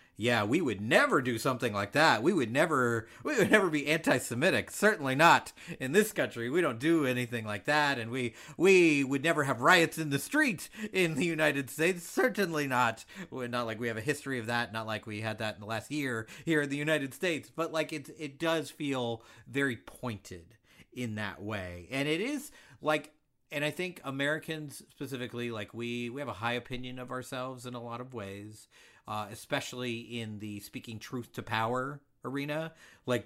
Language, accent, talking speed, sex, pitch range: English, American, 195 wpm, male, 115-145 Hz